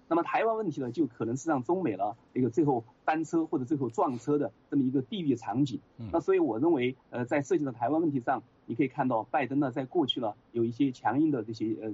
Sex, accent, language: male, native, Chinese